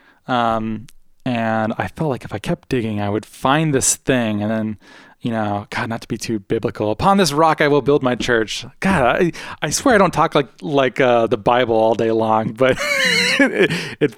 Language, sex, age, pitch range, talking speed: English, male, 20-39, 110-130 Hz, 210 wpm